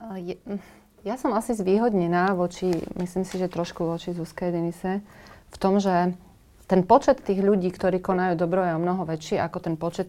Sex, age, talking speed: female, 30-49, 170 wpm